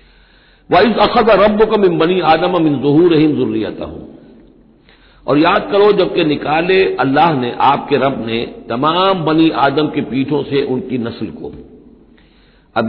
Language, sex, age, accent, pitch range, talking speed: Hindi, male, 60-79, native, 130-185 Hz, 155 wpm